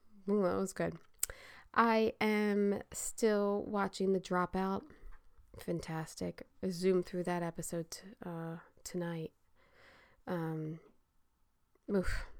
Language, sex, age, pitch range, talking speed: English, female, 20-39, 180-240 Hz, 80 wpm